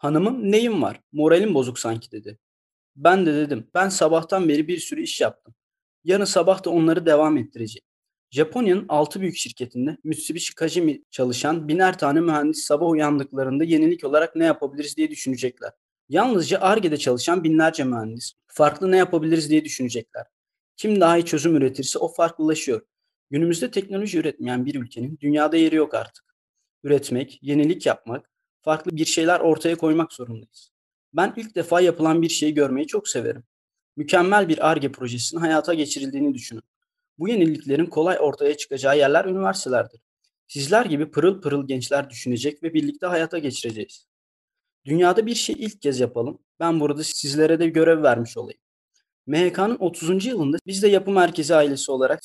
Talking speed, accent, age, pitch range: 150 wpm, native, 30-49, 145-190 Hz